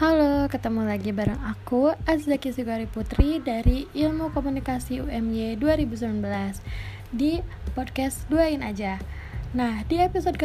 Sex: female